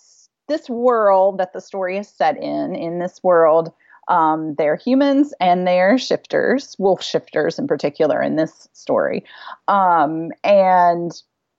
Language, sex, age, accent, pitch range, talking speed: English, female, 40-59, American, 170-230 Hz, 135 wpm